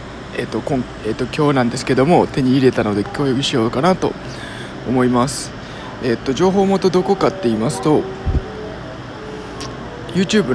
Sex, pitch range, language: male, 130-175 Hz, Japanese